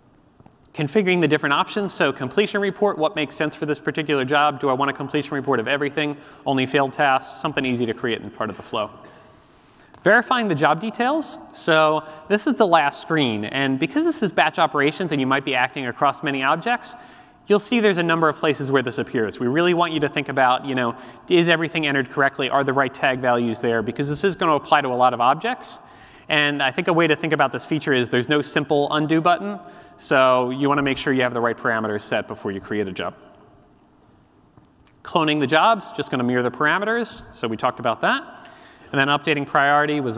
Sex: male